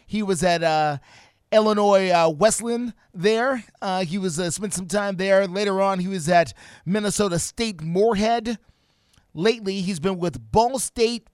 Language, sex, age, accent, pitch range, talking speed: English, male, 30-49, American, 165-210 Hz, 160 wpm